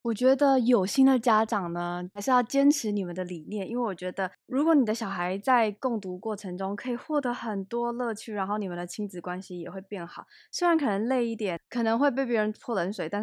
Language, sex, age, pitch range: Chinese, female, 20-39, 185-250 Hz